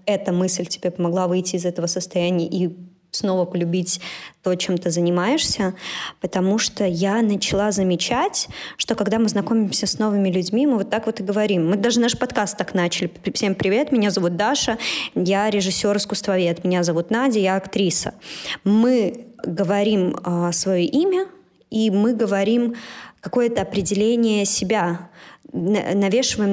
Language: Russian